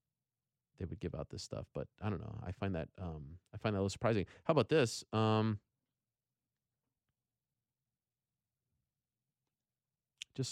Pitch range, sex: 95-120 Hz, male